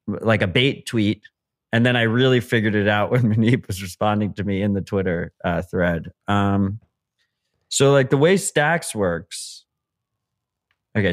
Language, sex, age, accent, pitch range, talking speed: English, male, 30-49, American, 100-125 Hz, 160 wpm